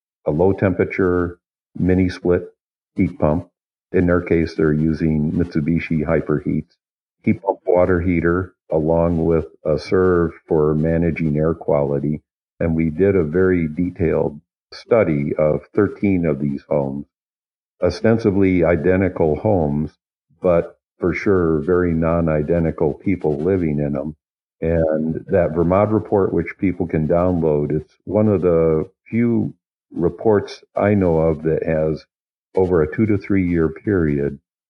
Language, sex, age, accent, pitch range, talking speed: English, male, 50-69, American, 75-90 Hz, 130 wpm